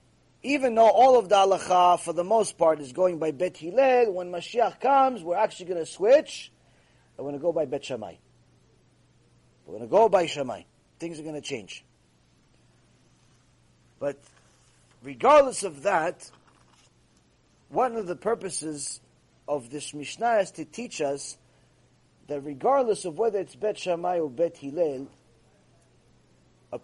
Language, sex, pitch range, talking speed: English, male, 160-255 Hz, 150 wpm